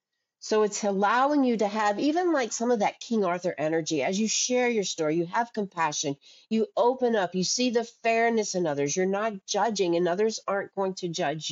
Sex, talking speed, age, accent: female, 210 wpm, 50-69, American